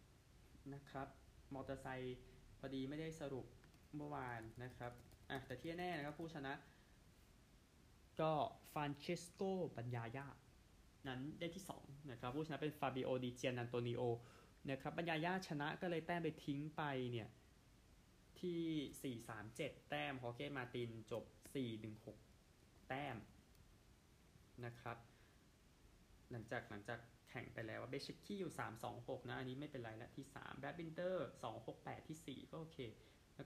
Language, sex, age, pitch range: Thai, male, 20-39, 115-145 Hz